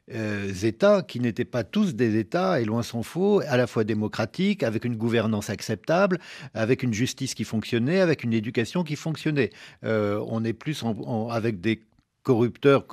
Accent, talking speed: French, 170 wpm